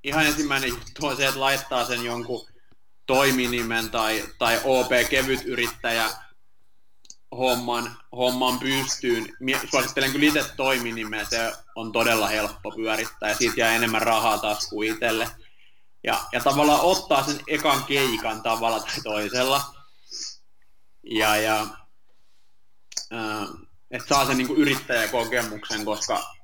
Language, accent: Finnish, native